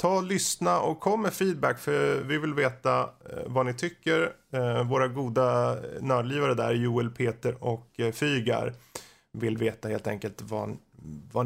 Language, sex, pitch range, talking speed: Swedish, male, 115-145 Hz, 140 wpm